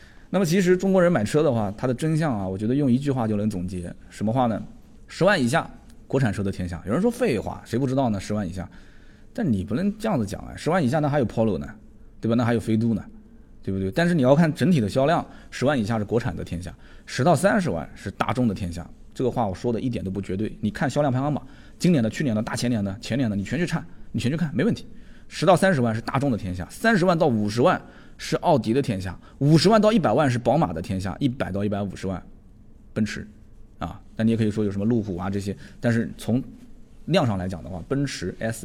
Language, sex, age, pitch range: Chinese, male, 20-39, 100-135 Hz